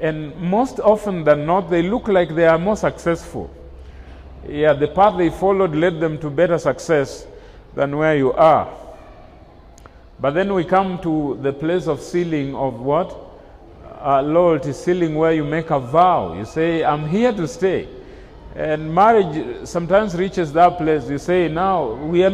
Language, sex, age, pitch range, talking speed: English, male, 40-59, 145-180 Hz, 165 wpm